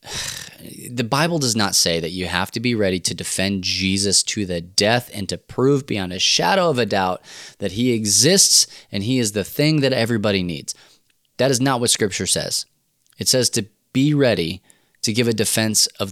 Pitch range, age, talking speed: 95-115 Hz, 20-39, 195 wpm